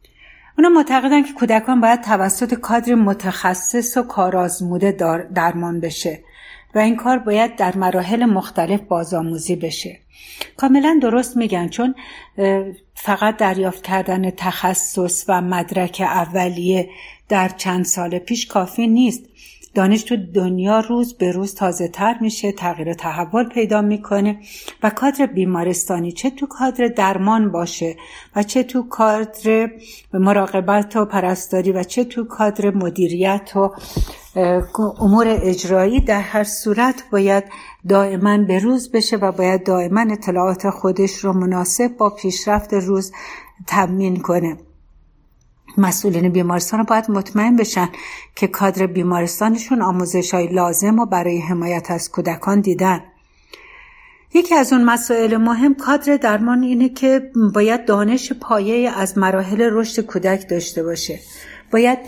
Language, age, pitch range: Persian, 60-79, 185-230 Hz